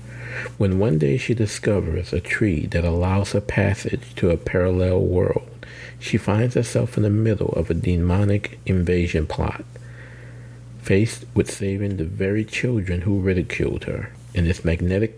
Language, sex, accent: English, male, American